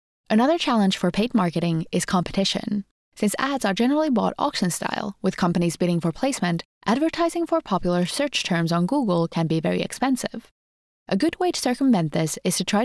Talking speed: 180 wpm